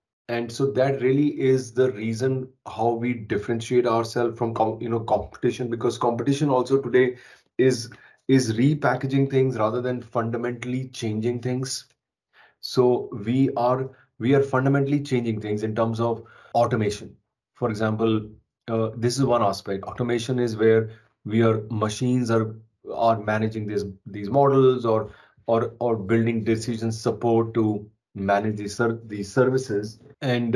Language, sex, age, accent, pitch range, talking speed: Romanian, male, 30-49, Indian, 110-125 Hz, 135 wpm